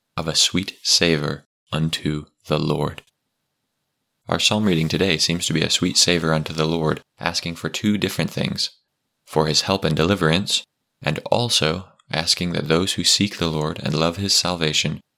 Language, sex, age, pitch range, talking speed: English, male, 20-39, 75-85 Hz, 170 wpm